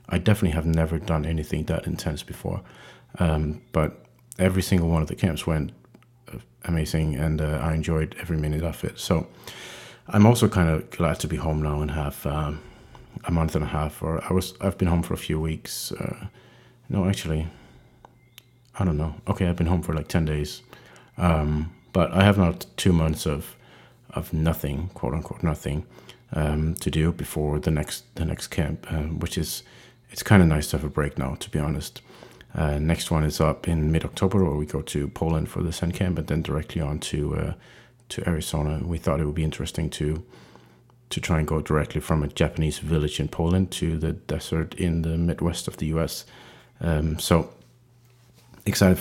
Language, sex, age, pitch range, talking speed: English, male, 30-49, 75-95 Hz, 195 wpm